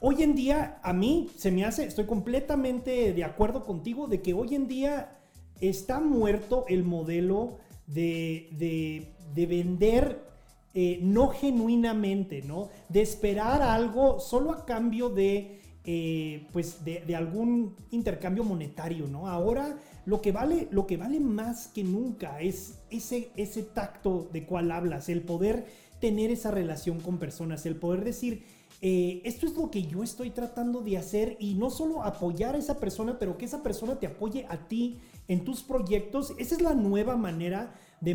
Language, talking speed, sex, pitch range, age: Spanish, 160 wpm, male, 180-245 Hz, 40-59